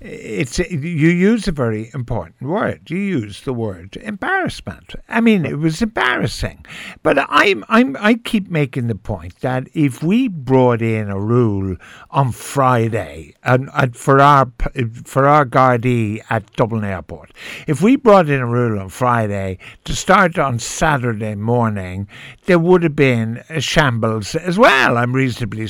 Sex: male